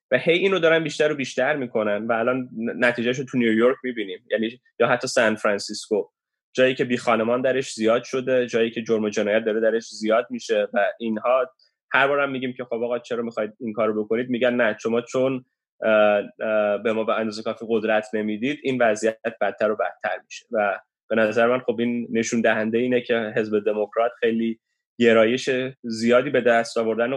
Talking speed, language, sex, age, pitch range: 185 wpm, Persian, male, 10-29, 110-130 Hz